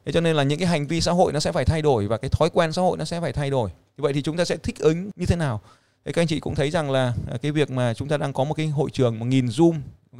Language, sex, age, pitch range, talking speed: Vietnamese, male, 20-39, 130-170 Hz, 355 wpm